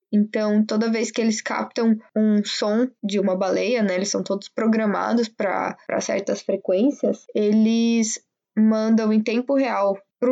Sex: female